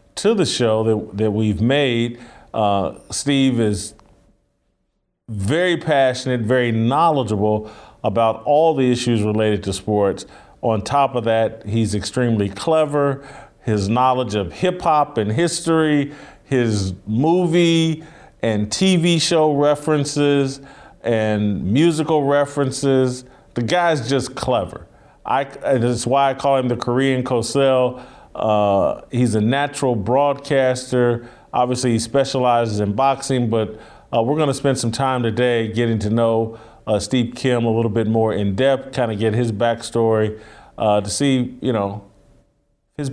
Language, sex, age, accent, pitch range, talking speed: English, male, 40-59, American, 110-140 Hz, 135 wpm